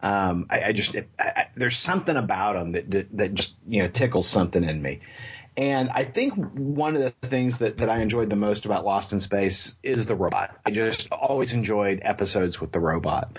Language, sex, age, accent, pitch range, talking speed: English, male, 40-59, American, 105-130 Hz, 220 wpm